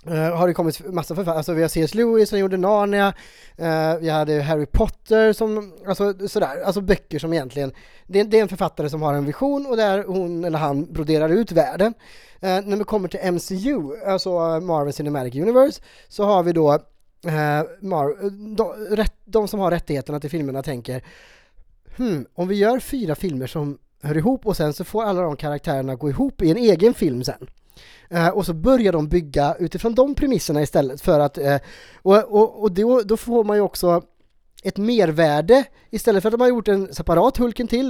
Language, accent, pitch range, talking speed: English, Norwegian, 160-210 Hz, 185 wpm